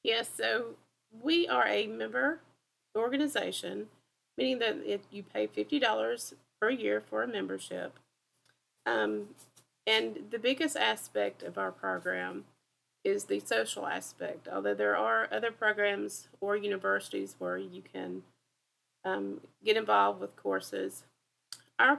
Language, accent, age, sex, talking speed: English, American, 30-49, female, 125 wpm